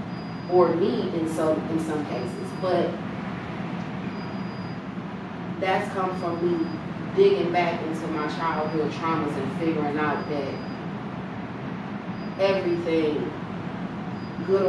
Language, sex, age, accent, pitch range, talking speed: English, female, 30-49, American, 160-195 Hz, 100 wpm